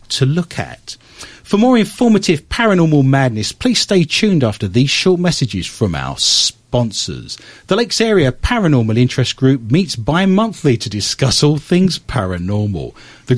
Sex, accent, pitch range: male, British, 115-180 Hz